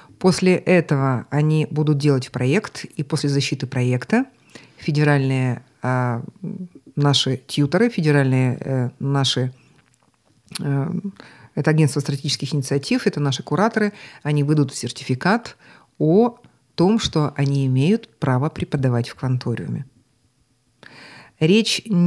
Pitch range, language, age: 135-165 Hz, Russian, 50-69